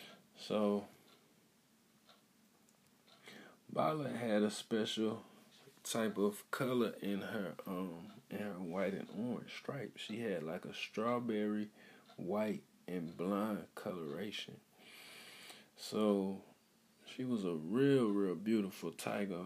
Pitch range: 95-120 Hz